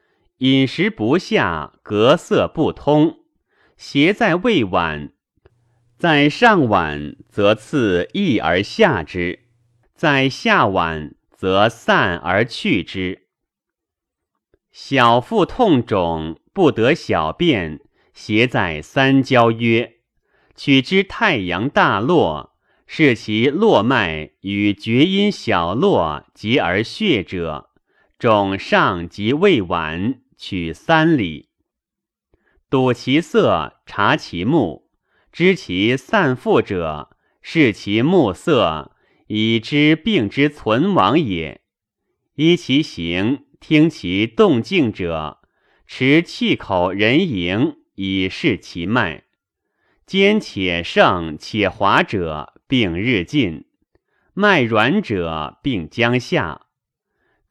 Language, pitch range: Chinese, 95-155 Hz